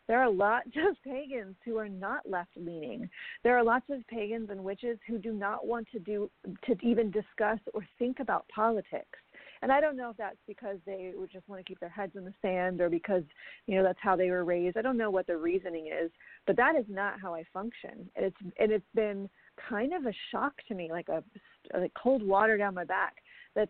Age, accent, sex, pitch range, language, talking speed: 40-59, American, female, 190-235 Hz, English, 230 wpm